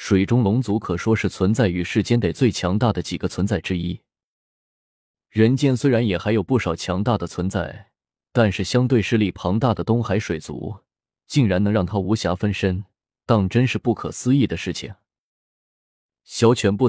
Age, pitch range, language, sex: 20-39, 95-120 Hz, Chinese, male